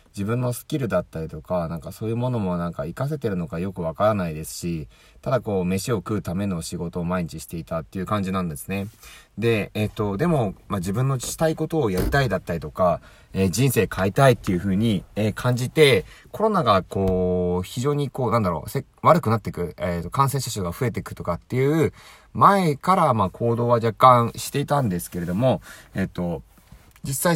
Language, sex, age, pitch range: Japanese, male, 30-49, 90-125 Hz